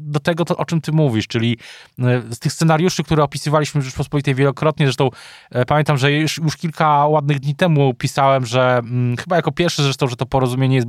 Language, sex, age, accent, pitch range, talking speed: Polish, male, 20-39, native, 135-160 Hz, 195 wpm